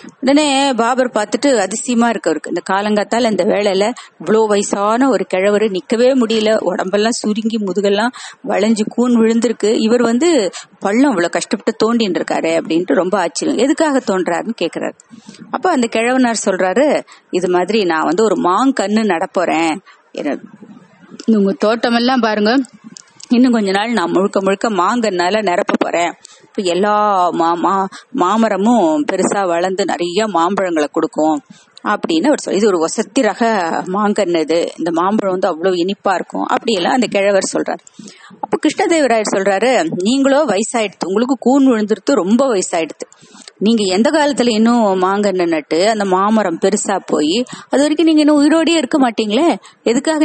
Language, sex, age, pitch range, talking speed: Tamil, female, 30-49, 200-250 Hz, 135 wpm